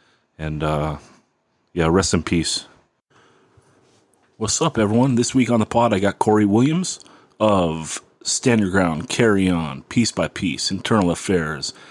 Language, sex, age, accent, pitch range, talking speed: English, male, 30-49, American, 90-110 Hz, 145 wpm